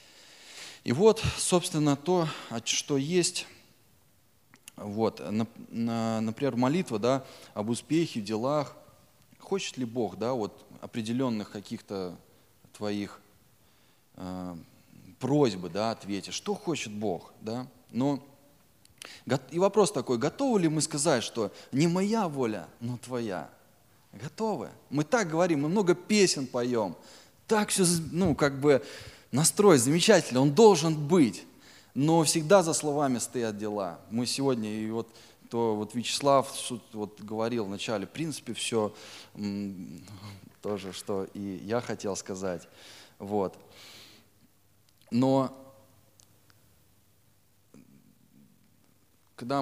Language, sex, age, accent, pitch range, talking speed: Russian, male, 20-39, native, 105-145 Hz, 100 wpm